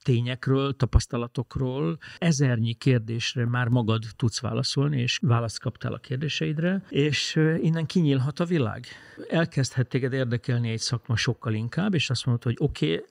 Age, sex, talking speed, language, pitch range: 50-69, male, 140 wpm, Hungarian, 115-140 Hz